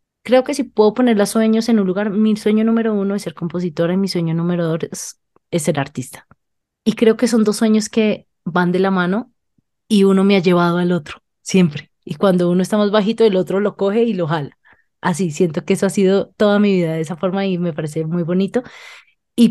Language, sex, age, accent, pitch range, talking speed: Spanish, female, 20-39, Colombian, 170-200 Hz, 235 wpm